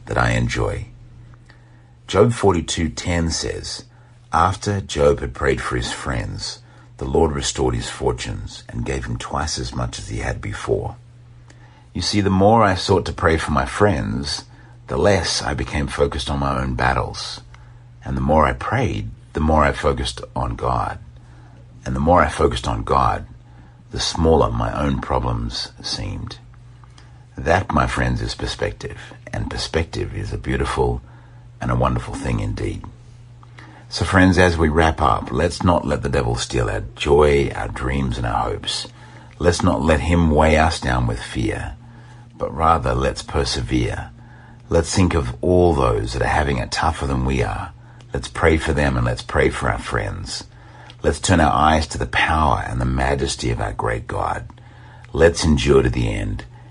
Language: English